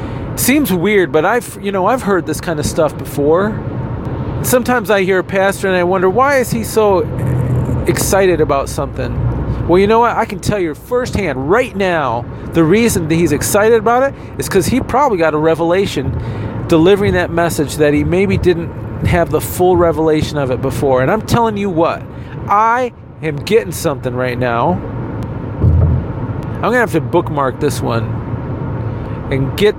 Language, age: English, 40-59